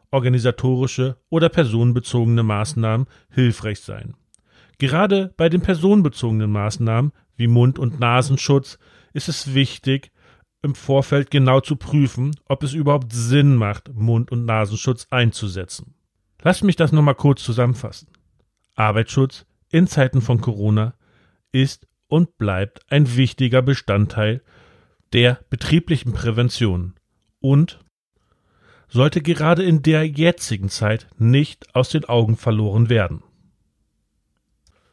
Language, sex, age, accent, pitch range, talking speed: German, male, 40-59, German, 105-140 Hz, 115 wpm